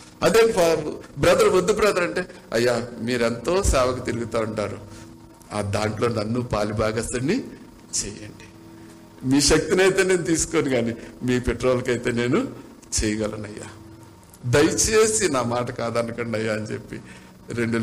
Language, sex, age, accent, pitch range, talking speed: Telugu, male, 60-79, native, 105-160 Hz, 120 wpm